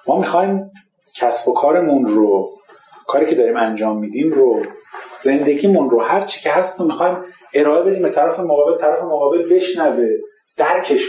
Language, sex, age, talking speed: Persian, male, 40-59, 140 wpm